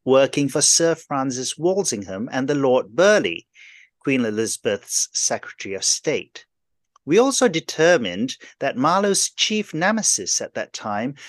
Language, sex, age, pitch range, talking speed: English, male, 40-59, 125-175 Hz, 130 wpm